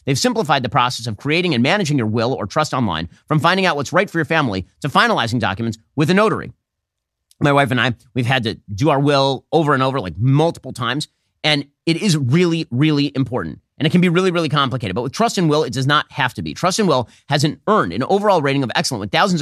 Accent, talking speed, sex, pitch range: American, 245 wpm, male, 120-170 Hz